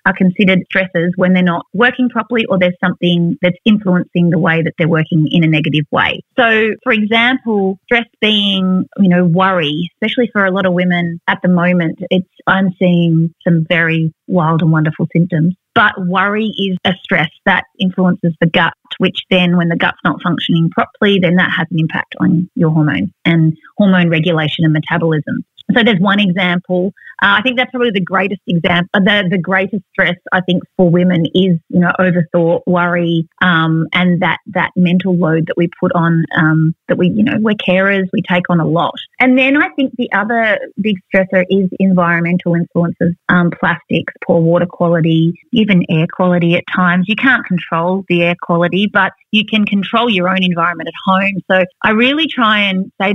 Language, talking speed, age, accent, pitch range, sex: English, 185 wpm, 30-49, Australian, 170-205 Hz, female